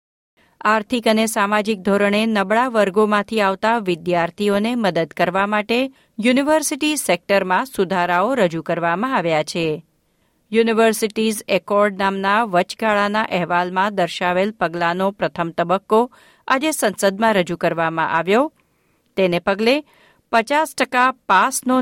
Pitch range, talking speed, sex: 180-230 Hz, 100 wpm, female